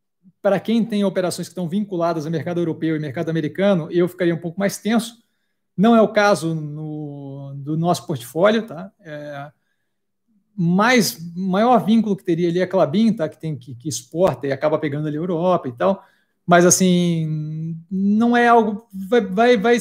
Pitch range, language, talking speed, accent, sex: 160-200 Hz, Portuguese, 180 wpm, Brazilian, male